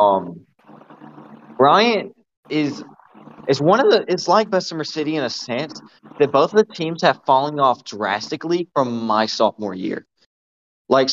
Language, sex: English, male